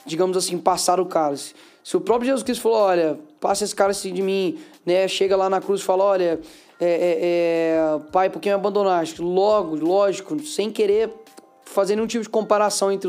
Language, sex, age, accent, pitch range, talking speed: Portuguese, male, 20-39, Brazilian, 180-220 Hz, 195 wpm